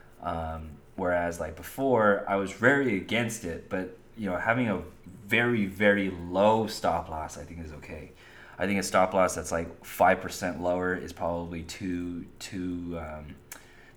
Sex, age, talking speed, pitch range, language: male, 20-39, 165 wpm, 85-110 Hz, English